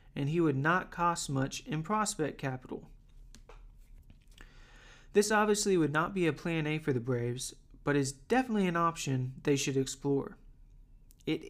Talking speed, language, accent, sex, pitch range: 150 wpm, English, American, male, 135-170 Hz